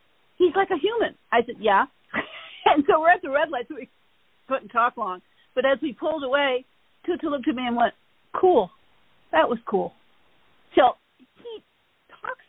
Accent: American